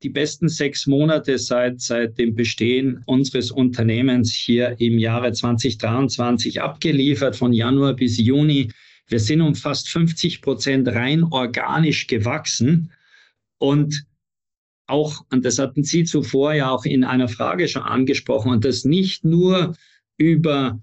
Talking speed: 135 wpm